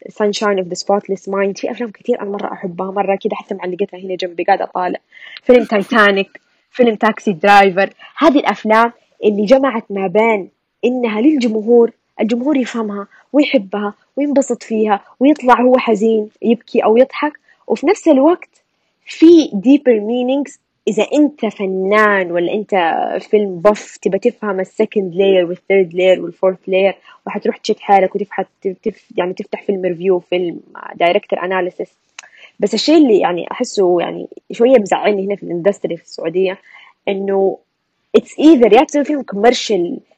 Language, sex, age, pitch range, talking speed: Arabic, female, 20-39, 195-255 Hz, 145 wpm